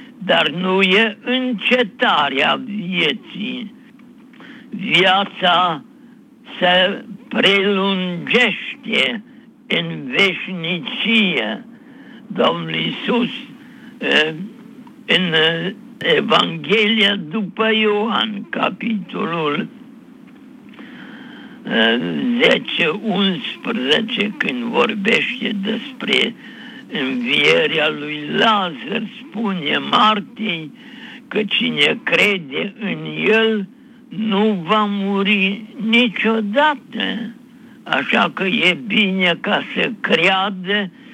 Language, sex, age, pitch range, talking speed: Romanian, male, 60-79, 200-245 Hz, 65 wpm